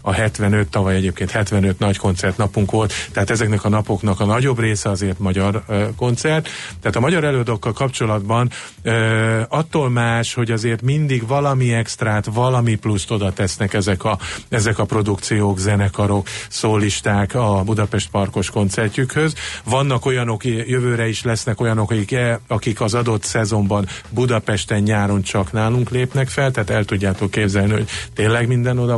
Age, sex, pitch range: 50-69, male, 105-125 Hz